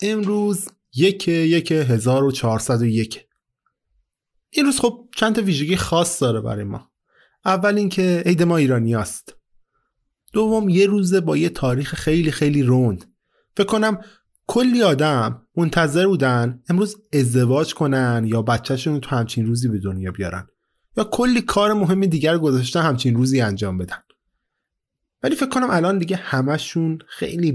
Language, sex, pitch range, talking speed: Persian, male, 120-190 Hz, 145 wpm